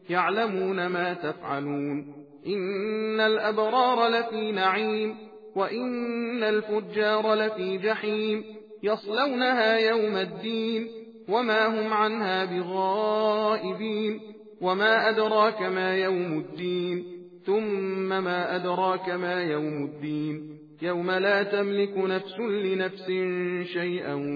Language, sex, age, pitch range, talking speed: Persian, male, 40-59, 170-215 Hz, 85 wpm